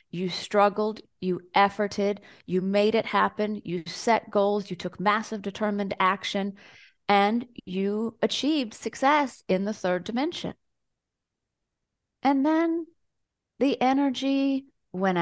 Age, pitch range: 30-49, 190-230 Hz